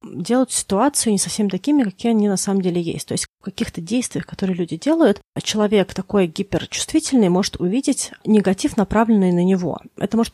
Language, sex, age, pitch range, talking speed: Russian, female, 30-49, 170-220 Hz, 175 wpm